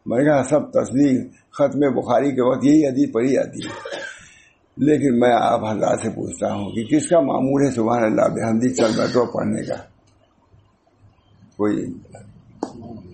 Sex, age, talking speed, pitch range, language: male, 60-79, 135 wpm, 110-135 Hz, English